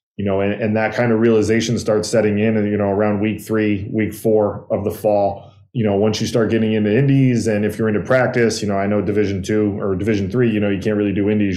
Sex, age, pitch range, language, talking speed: male, 20-39, 100-115 Hz, English, 265 wpm